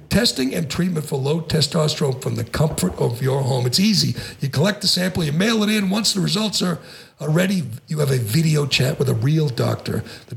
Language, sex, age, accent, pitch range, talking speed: English, male, 60-79, American, 145-185 Hz, 215 wpm